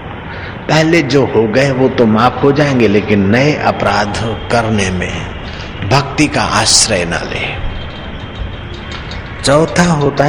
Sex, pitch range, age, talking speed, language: male, 100-130 Hz, 50-69, 120 wpm, Hindi